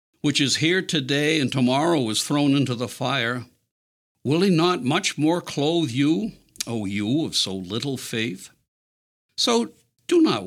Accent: American